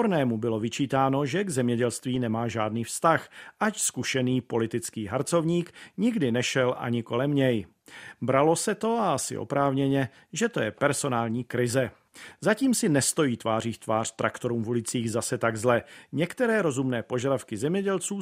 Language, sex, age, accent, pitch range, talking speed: Czech, male, 40-59, native, 120-165 Hz, 145 wpm